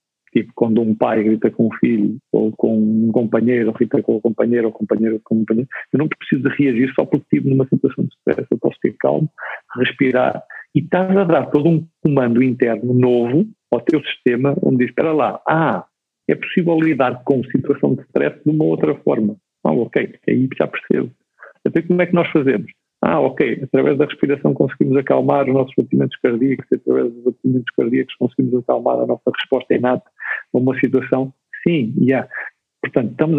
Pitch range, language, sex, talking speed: 120-160 Hz, Portuguese, male, 195 wpm